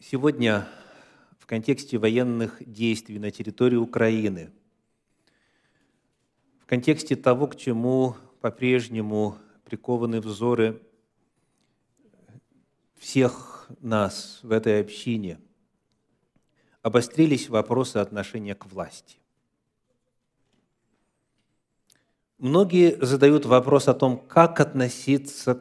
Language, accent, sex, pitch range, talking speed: Russian, native, male, 115-145 Hz, 75 wpm